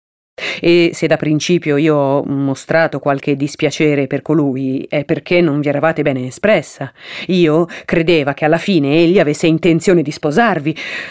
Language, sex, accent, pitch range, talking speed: Italian, female, native, 140-170 Hz, 150 wpm